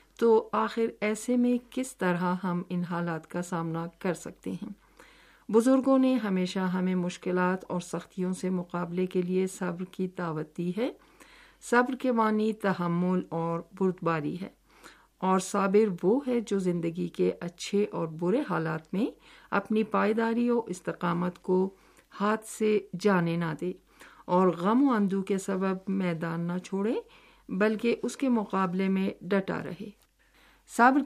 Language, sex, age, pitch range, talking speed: Urdu, female, 50-69, 175-210 Hz, 145 wpm